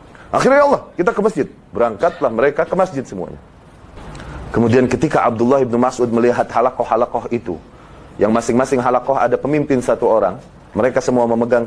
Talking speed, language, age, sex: 145 wpm, Indonesian, 30-49, male